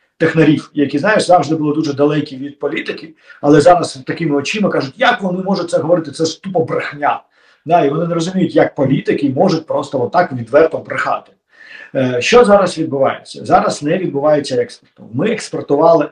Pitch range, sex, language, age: 140-175 Hz, male, Ukrainian, 50-69